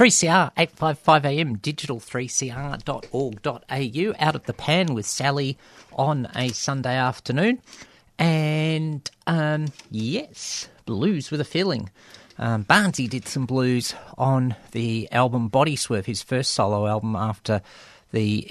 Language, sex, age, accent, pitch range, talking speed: English, male, 50-69, Australian, 110-140 Hz, 115 wpm